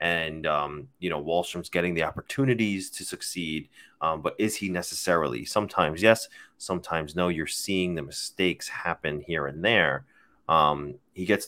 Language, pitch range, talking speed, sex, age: English, 80-95 Hz, 155 wpm, male, 30-49